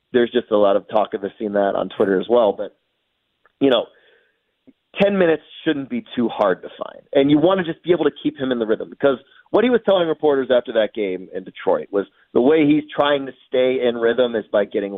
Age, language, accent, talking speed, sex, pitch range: 30-49, English, American, 245 wpm, male, 110-150 Hz